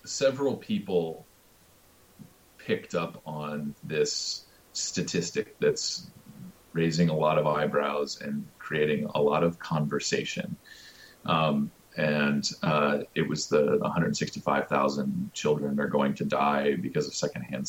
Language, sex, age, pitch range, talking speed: English, male, 30-49, 75-120 Hz, 115 wpm